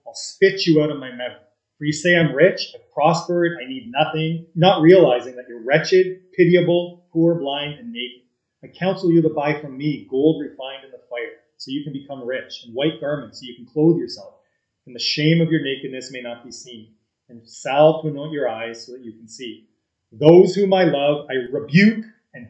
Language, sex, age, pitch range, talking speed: English, male, 30-49, 125-165 Hz, 215 wpm